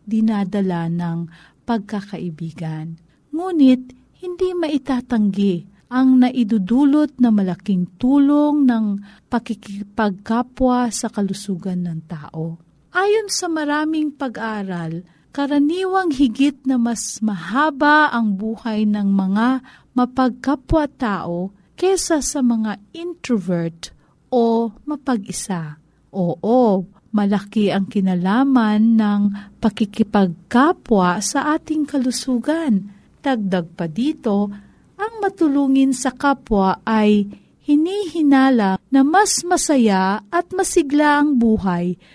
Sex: female